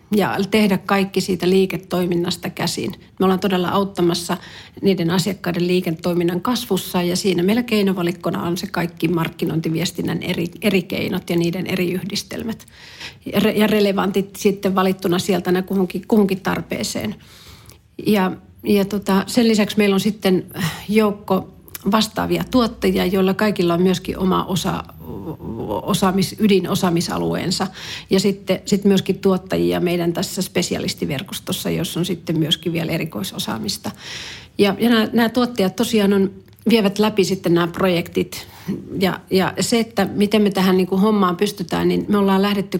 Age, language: 40-59, Finnish